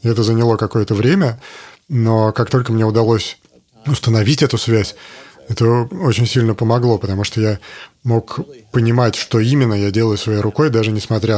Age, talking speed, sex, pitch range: 30-49, 155 wpm, male, 110-125 Hz